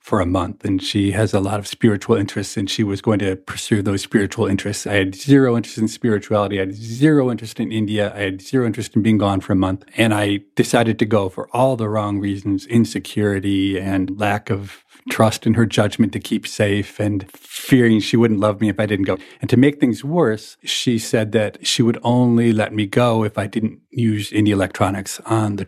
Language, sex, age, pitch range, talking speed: English, male, 40-59, 105-135 Hz, 220 wpm